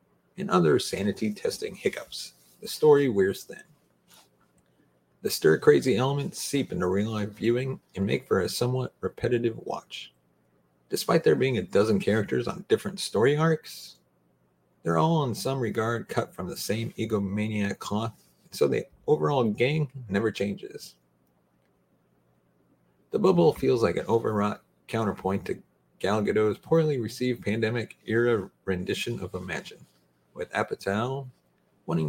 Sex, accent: male, American